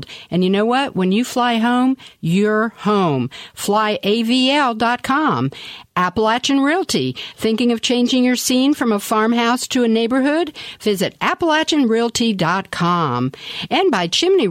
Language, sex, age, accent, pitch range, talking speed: English, female, 50-69, American, 175-245 Hz, 120 wpm